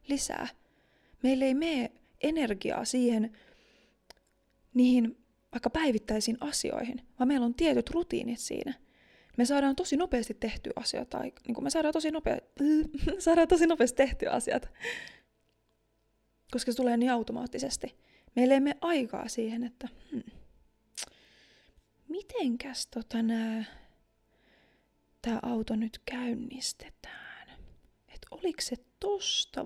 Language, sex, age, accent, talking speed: Finnish, female, 20-39, native, 100 wpm